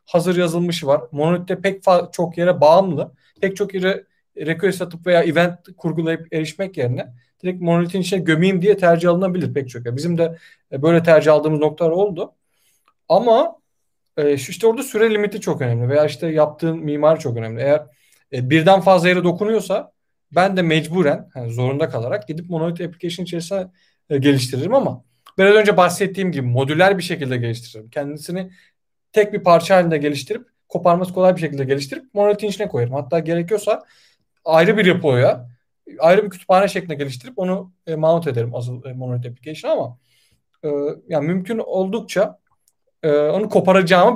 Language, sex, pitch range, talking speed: Turkish, male, 150-195 Hz, 150 wpm